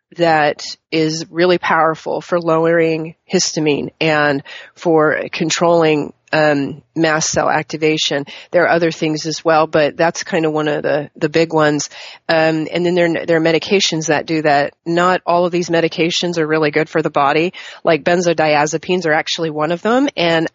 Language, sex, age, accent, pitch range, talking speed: English, female, 30-49, American, 150-170 Hz, 170 wpm